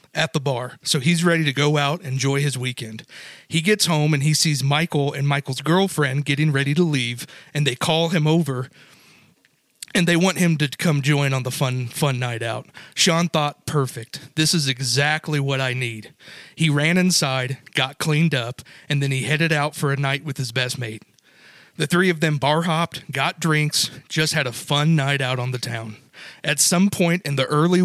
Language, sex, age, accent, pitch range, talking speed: English, male, 40-59, American, 135-165 Hz, 205 wpm